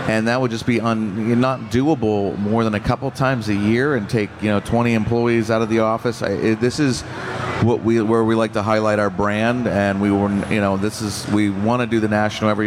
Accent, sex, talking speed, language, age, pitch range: American, male, 245 wpm, English, 40-59, 110-125 Hz